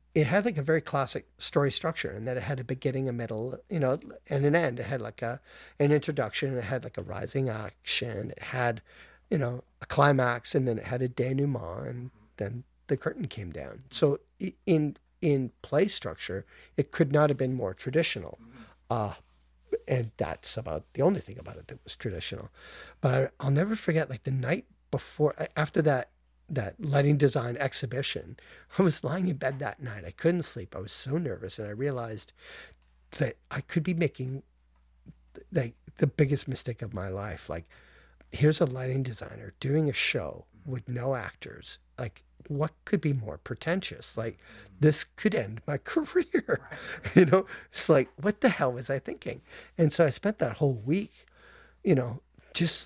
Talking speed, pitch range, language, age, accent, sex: 185 wpm, 115-155 Hz, English, 50-69, American, male